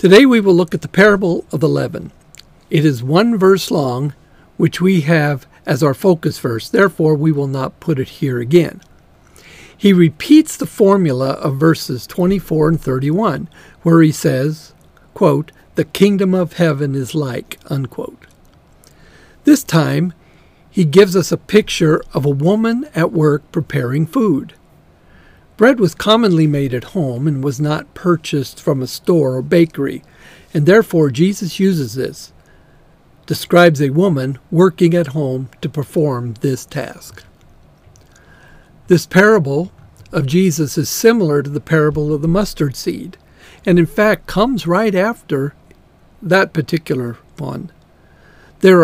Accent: American